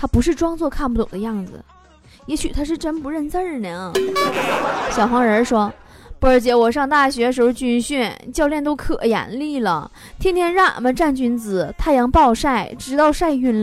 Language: Chinese